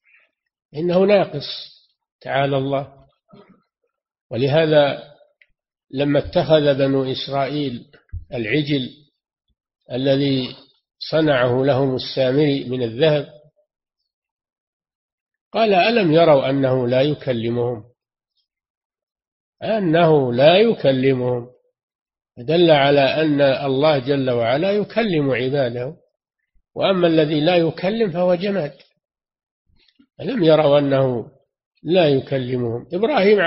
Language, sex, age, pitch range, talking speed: Arabic, male, 50-69, 130-165 Hz, 80 wpm